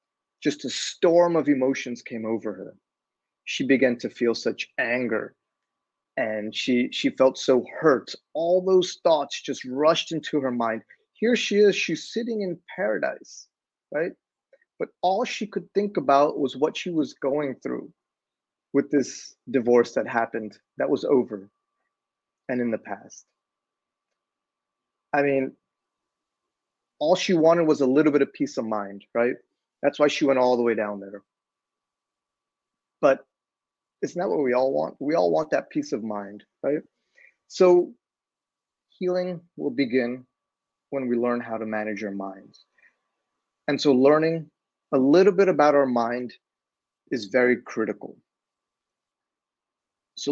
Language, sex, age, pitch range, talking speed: English, male, 30-49, 120-170 Hz, 145 wpm